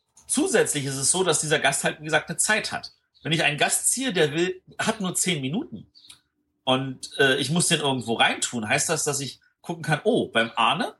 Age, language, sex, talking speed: 40-59, German, male, 220 wpm